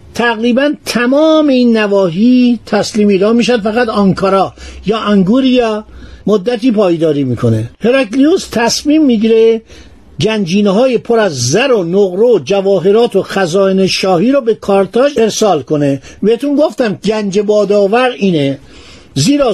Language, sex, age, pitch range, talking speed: Persian, male, 50-69, 190-245 Hz, 115 wpm